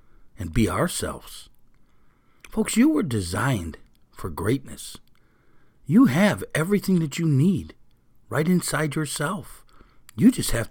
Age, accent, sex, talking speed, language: 60-79, American, male, 120 wpm, English